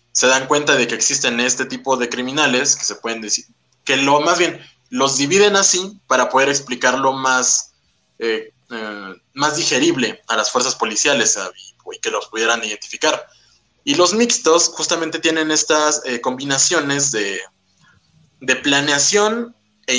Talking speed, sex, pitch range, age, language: 155 wpm, male, 125-165 Hz, 20-39, Spanish